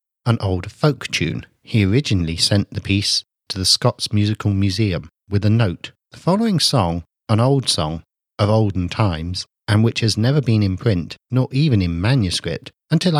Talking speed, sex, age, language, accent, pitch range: 175 wpm, male, 50-69, English, British, 95-130 Hz